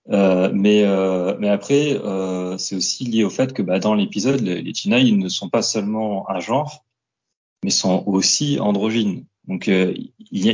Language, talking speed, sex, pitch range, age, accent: French, 180 wpm, male, 95-125 Hz, 30-49, French